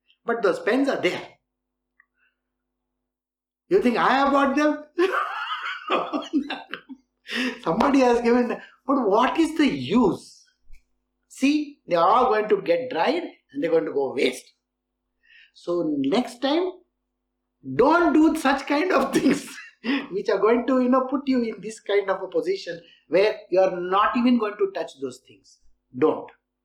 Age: 60-79